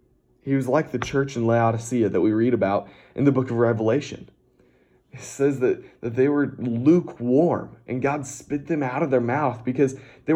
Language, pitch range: English, 110-130 Hz